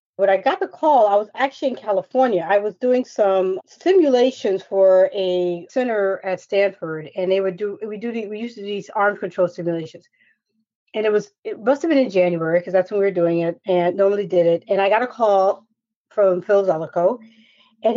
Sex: female